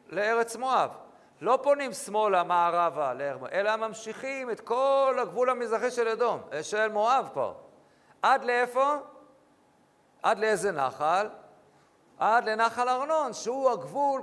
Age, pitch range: 50-69, 195-255 Hz